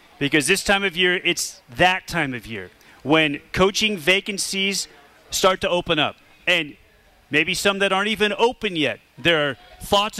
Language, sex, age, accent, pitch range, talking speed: English, male, 40-59, American, 160-210 Hz, 165 wpm